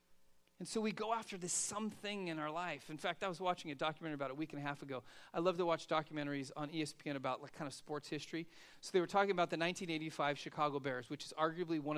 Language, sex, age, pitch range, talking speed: English, male, 40-59, 140-170 Hz, 245 wpm